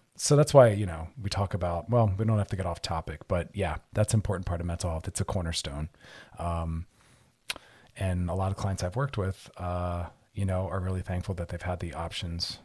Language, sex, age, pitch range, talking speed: English, male, 30-49, 90-105 Hz, 230 wpm